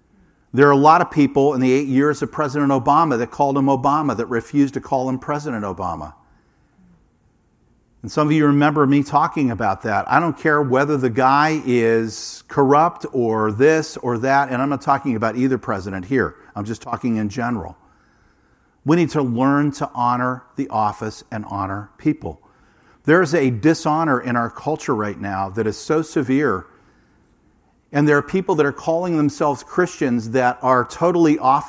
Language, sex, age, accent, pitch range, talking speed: English, male, 50-69, American, 120-150 Hz, 180 wpm